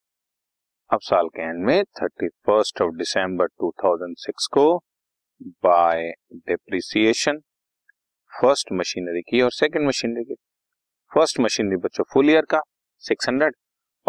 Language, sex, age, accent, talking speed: Hindi, male, 30-49, native, 110 wpm